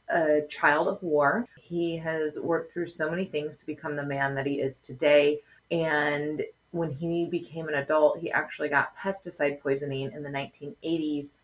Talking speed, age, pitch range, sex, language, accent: 175 wpm, 20-39, 145-175 Hz, female, English, American